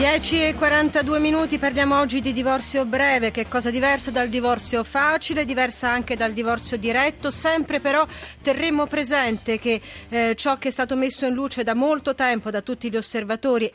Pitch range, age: 205-255 Hz, 40-59